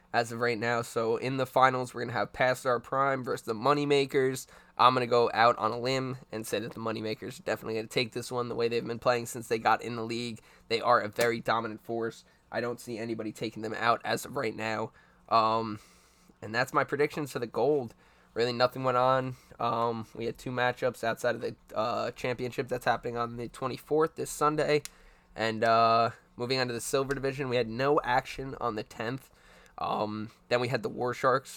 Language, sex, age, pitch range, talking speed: English, male, 10-29, 115-130 Hz, 220 wpm